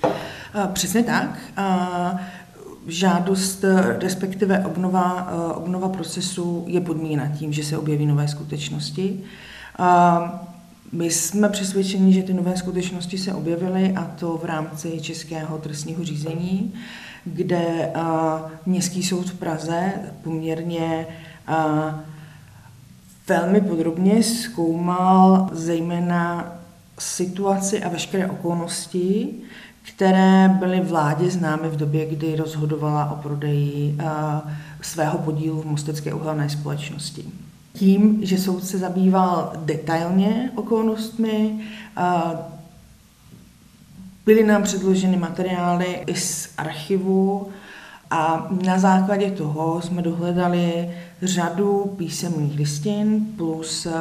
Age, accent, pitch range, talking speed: 40-59, native, 160-190 Hz, 95 wpm